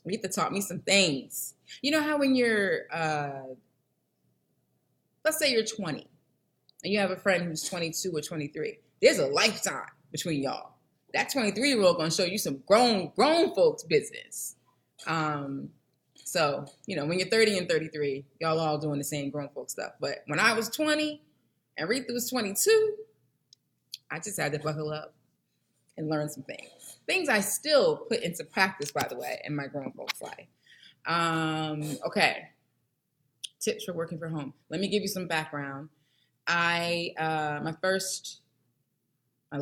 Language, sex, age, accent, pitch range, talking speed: English, female, 20-39, American, 150-225 Hz, 160 wpm